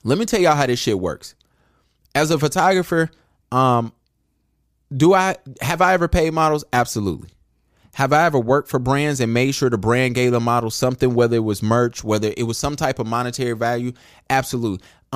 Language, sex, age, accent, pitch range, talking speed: English, male, 20-39, American, 110-135 Hz, 190 wpm